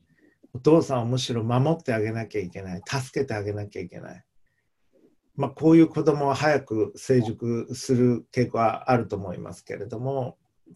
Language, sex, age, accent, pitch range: Japanese, male, 50-69, native, 110-140 Hz